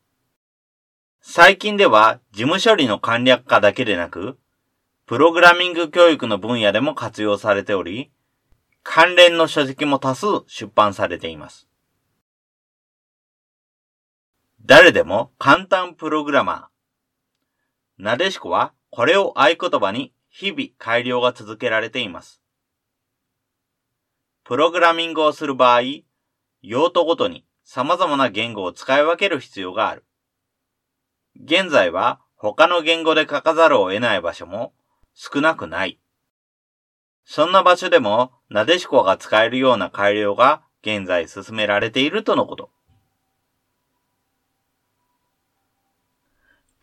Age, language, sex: 40-59, Japanese, male